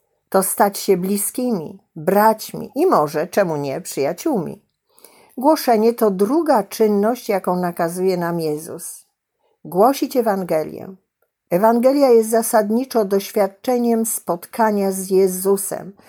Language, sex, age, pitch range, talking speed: Polish, female, 50-69, 185-230 Hz, 100 wpm